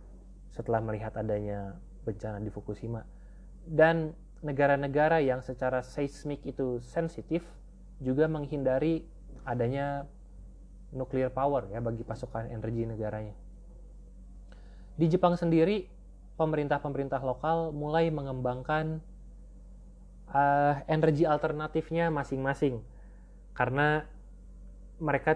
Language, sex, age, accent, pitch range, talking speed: Indonesian, male, 20-39, native, 120-155 Hz, 85 wpm